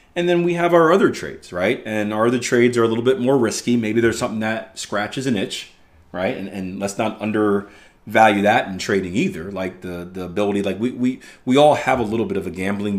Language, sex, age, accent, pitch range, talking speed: English, male, 30-49, American, 90-115 Hz, 235 wpm